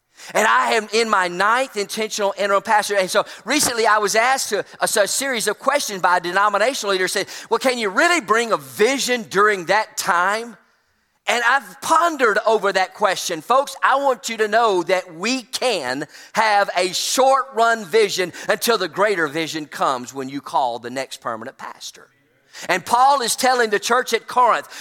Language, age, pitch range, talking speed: English, 40-59, 200-255 Hz, 180 wpm